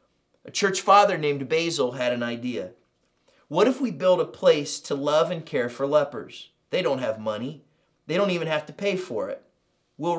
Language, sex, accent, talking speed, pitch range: English, male, American, 195 wpm, 120-170 Hz